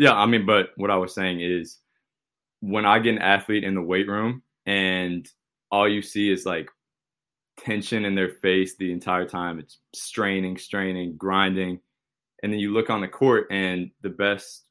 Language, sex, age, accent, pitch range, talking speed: English, male, 20-39, American, 90-105 Hz, 185 wpm